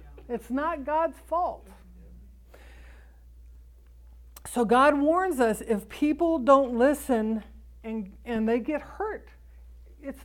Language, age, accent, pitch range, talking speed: English, 60-79, American, 235-330 Hz, 105 wpm